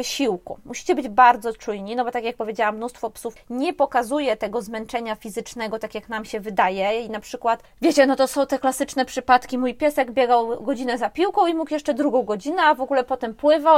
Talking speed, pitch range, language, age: 210 wpm, 225-270 Hz, Polish, 20-39